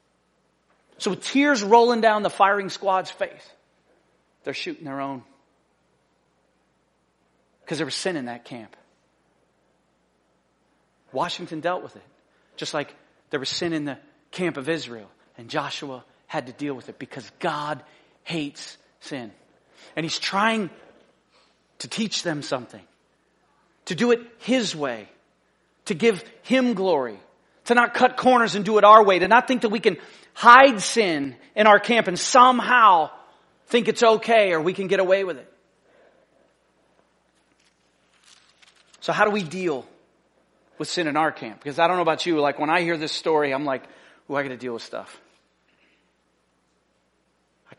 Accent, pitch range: American, 150-220 Hz